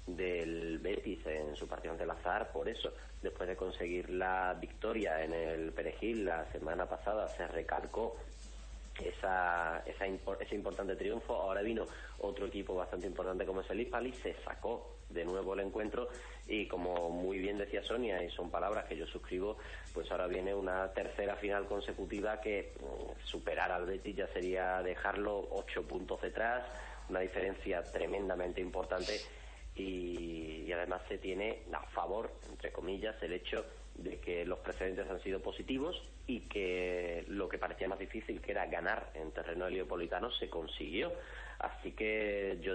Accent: Spanish